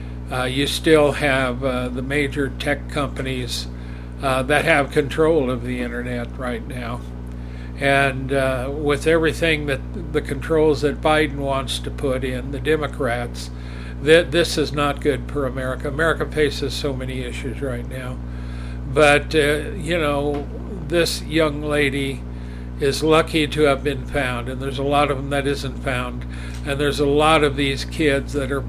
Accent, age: American, 60-79